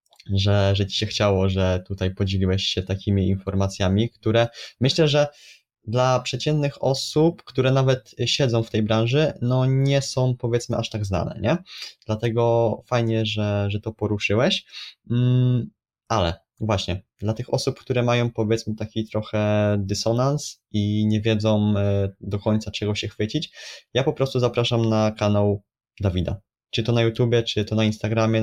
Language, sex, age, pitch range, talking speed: Polish, male, 20-39, 100-120 Hz, 150 wpm